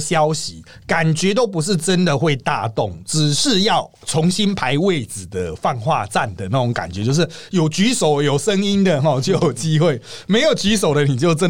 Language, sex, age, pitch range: Chinese, male, 30-49, 130-180 Hz